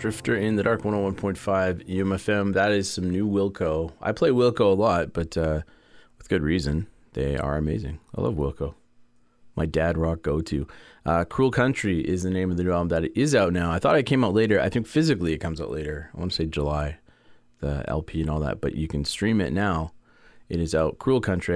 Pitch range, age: 80-100 Hz, 30-49